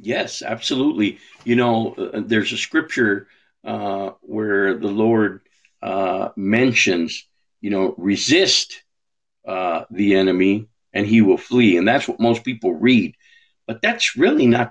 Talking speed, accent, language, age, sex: 135 wpm, American, English, 50-69, male